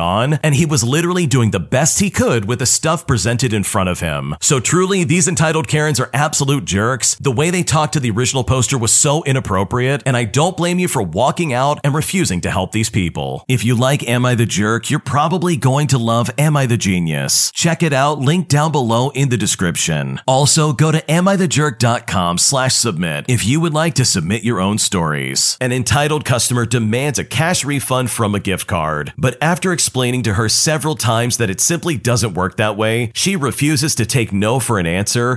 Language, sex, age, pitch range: English, male, 40-59, 105-150 Hz